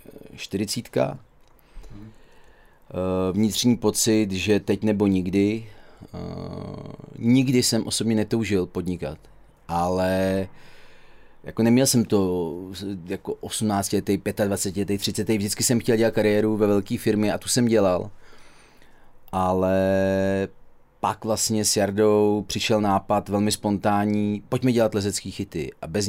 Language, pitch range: Czech, 95-110 Hz